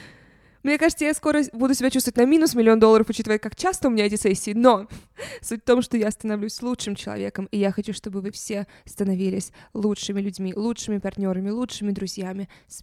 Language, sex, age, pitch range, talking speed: Russian, female, 20-39, 185-220 Hz, 190 wpm